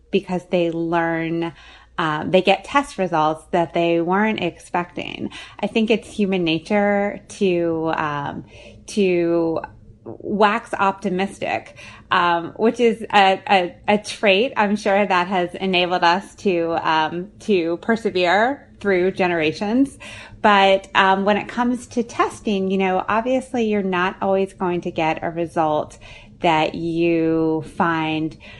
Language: English